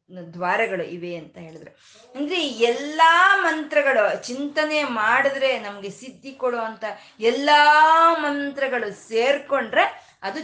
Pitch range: 185-245 Hz